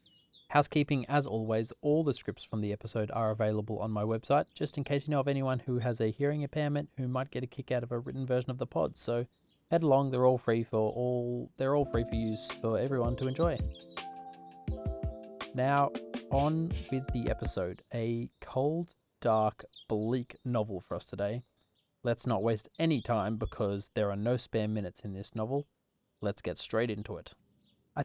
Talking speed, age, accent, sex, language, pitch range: 190 wpm, 20-39, Australian, male, English, 110-130 Hz